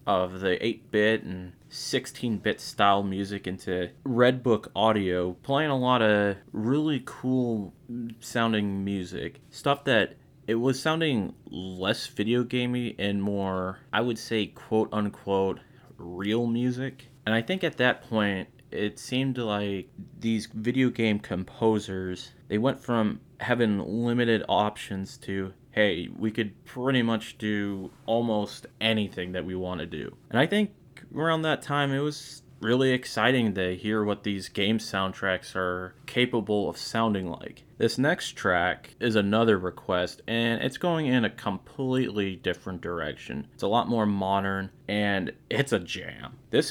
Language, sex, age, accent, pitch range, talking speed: English, male, 20-39, American, 100-125 Hz, 145 wpm